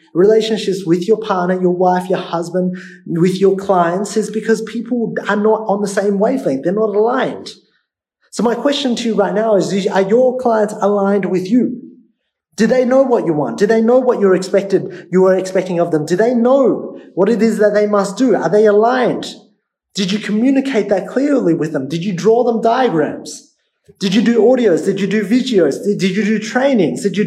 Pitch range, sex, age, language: 180-225 Hz, male, 30-49, English